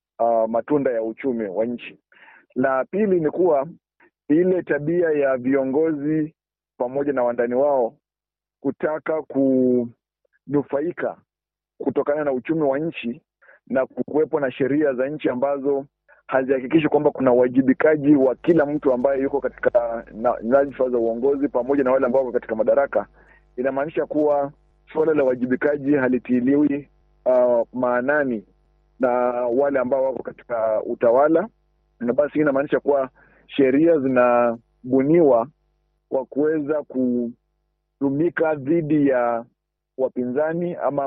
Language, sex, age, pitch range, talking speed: Swahili, male, 50-69, 125-145 Hz, 115 wpm